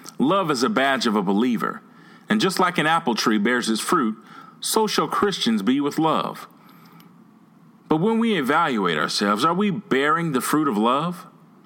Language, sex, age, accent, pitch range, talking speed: English, male, 30-49, American, 160-215 Hz, 175 wpm